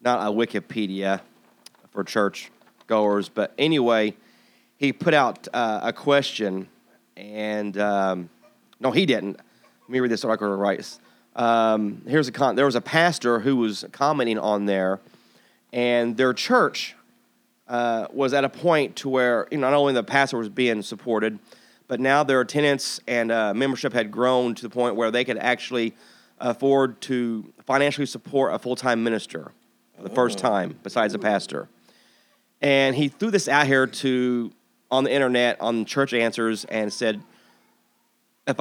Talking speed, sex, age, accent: 160 wpm, male, 30-49, American